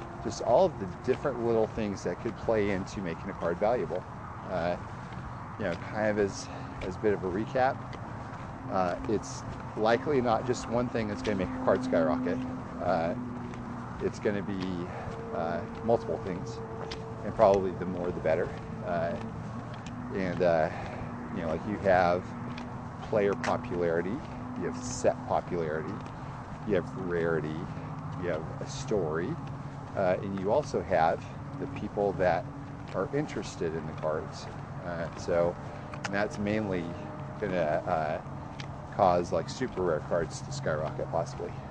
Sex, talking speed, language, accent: male, 145 wpm, English, American